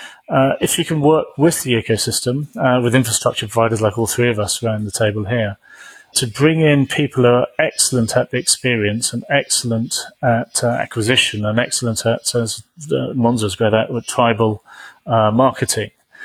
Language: English